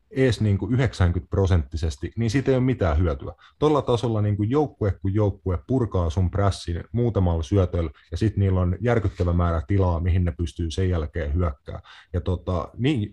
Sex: male